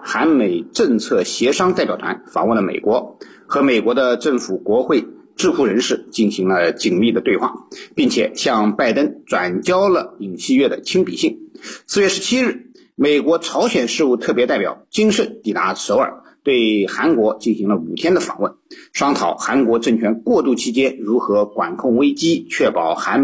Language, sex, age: Chinese, male, 50-69